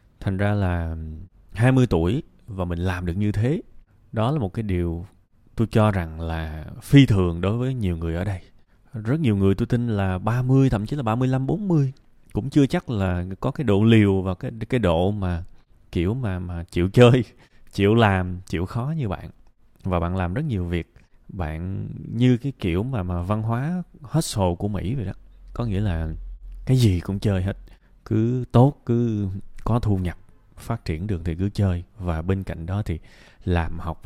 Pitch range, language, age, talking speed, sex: 90-120 Hz, Vietnamese, 20-39, 195 wpm, male